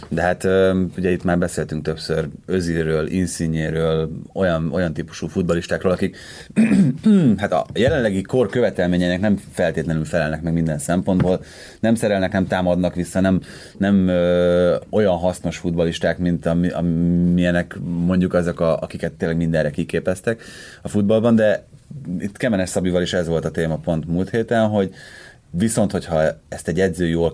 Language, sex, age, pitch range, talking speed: Hungarian, male, 30-49, 80-100 Hz, 145 wpm